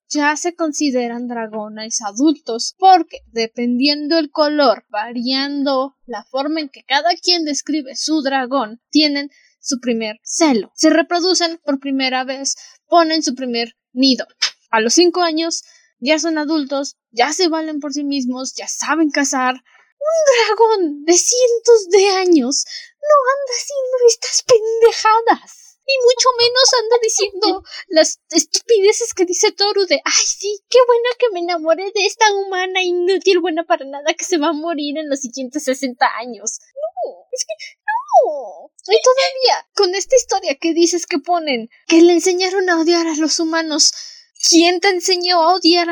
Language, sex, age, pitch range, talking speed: Spanish, female, 10-29, 280-370 Hz, 155 wpm